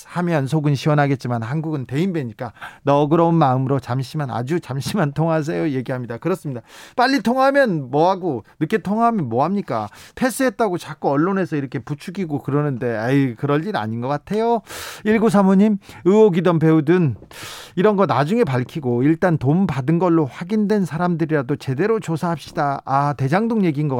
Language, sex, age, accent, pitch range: Korean, male, 40-59, native, 135-185 Hz